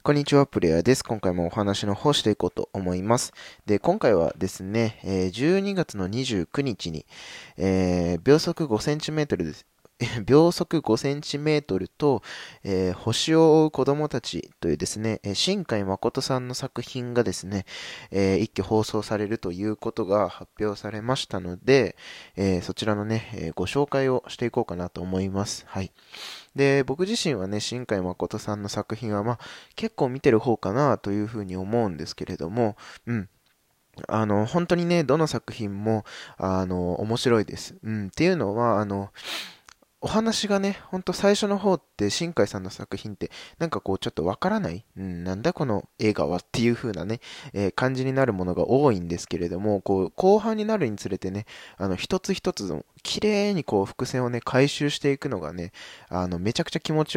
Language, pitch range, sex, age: Japanese, 95-140 Hz, male, 20-39